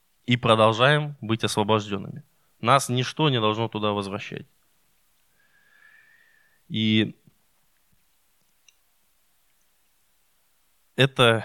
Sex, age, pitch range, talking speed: male, 20-39, 110-145 Hz, 65 wpm